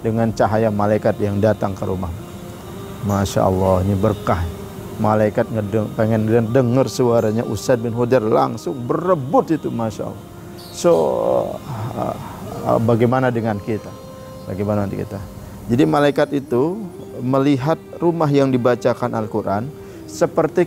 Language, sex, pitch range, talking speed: English, male, 105-135 Hz, 120 wpm